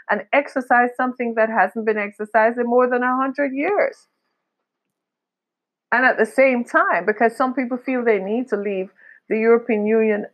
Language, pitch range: English, 185-245 Hz